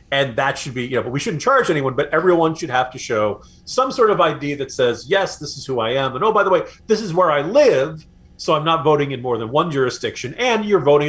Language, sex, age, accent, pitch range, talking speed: English, male, 40-59, American, 110-160 Hz, 275 wpm